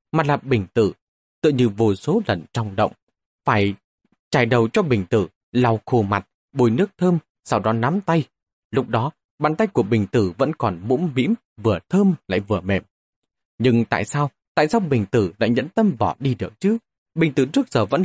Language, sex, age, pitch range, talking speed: Vietnamese, male, 20-39, 110-175 Hz, 205 wpm